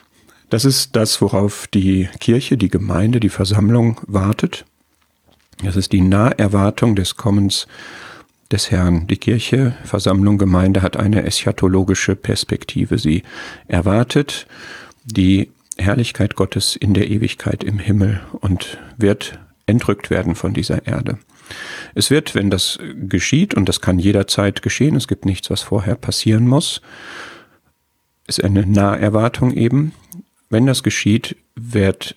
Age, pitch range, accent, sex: 40-59, 95-115 Hz, German, male